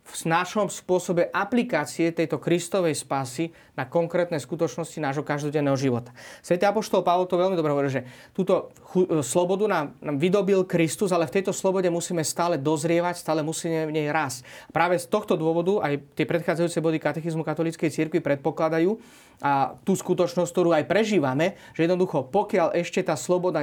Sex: male